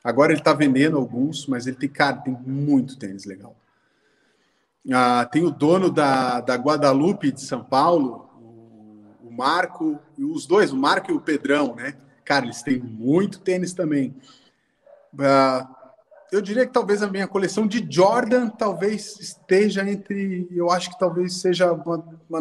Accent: Brazilian